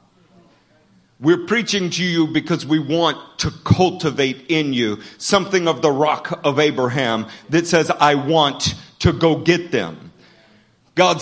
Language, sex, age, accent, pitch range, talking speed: English, male, 40-59, American, 160-220 Hz, 140 wpm